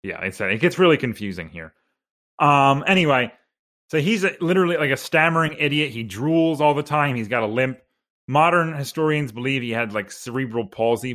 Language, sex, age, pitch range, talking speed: English, male, 30-49, 120-150 Hz, 185 wpm